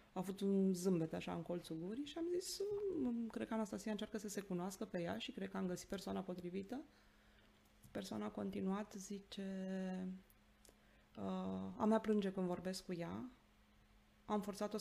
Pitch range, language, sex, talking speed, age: 170-225 Hz, Romanian, female, 160 wpm, 30-49